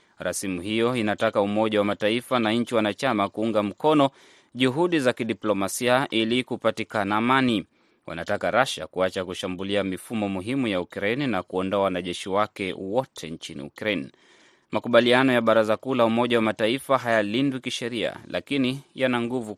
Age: 20-39